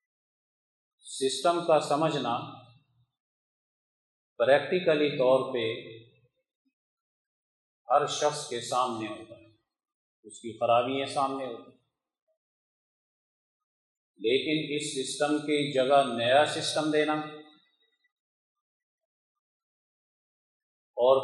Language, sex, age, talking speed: Urdu, male, 40-59, 75 wpm